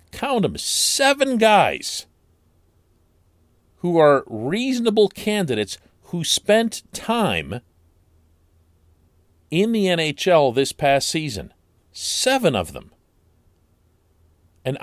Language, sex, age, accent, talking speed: English, male, 50-69, American, 85 wpm